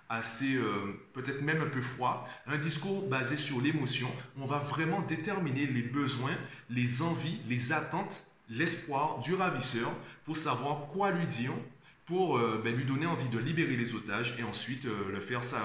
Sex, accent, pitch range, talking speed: male, French, 115-155 Hz, 175 wpm